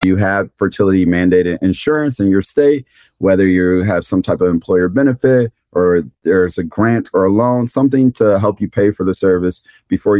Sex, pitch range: male, 95-115 Hz